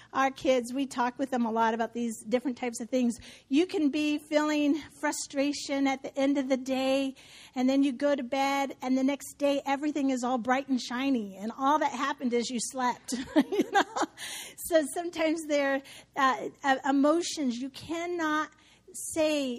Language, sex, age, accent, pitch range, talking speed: English, female, 40-59, American, 245-290 Hz, 180 wpm